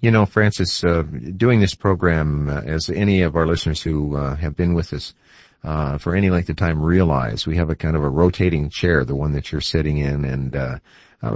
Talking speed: 220 wpm